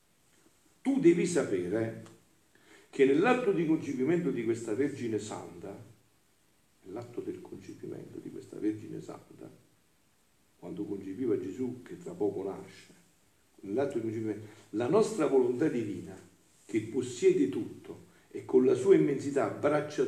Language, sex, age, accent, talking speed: Italian, male, 50-69, native, 125 wpm